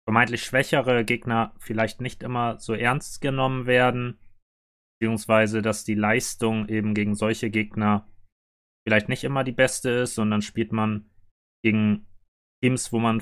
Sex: male